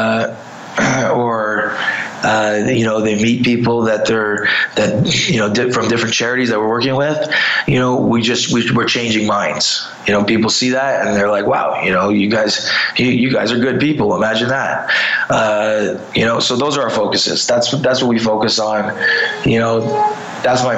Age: 20-39